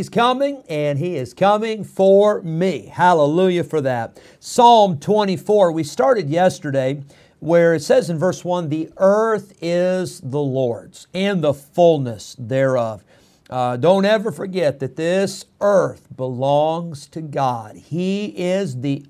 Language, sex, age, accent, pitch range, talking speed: English, male, 50-69, American, 140-185 Hz, 140 wpm